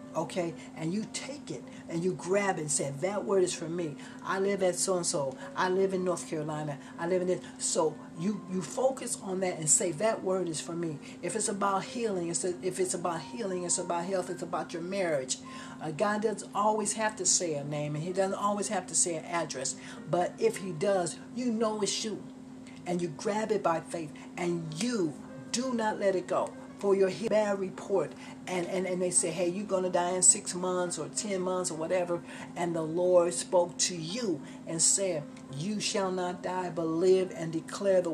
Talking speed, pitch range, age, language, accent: 215 wpm, 175-210 Hz, 60-79, English, American